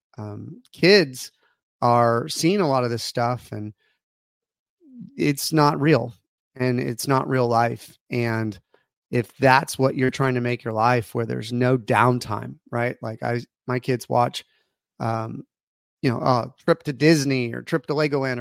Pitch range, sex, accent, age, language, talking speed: 120-140 Hz, male, American, 30-49, English, 160 wpm